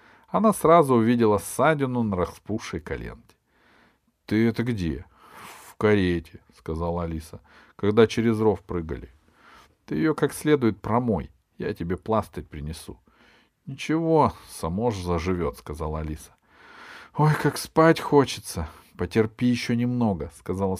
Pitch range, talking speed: 90-150 Hz, 115 wpm